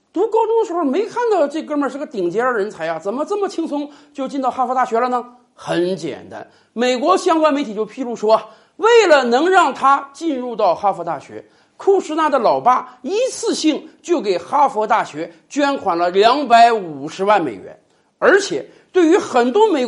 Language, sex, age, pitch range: Chinese, male, 50-69, 210-335 Hz